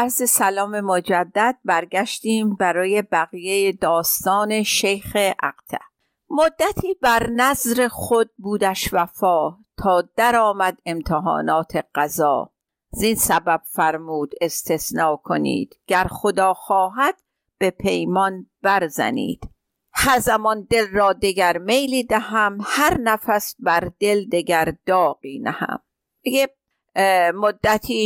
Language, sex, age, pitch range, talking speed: Persian, female, 50-69, 180-230 Hz, 100 wpm